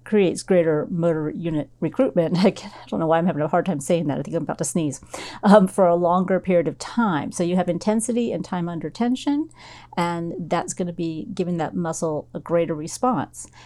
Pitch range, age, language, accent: 170-205 Hz, 40-59, English, American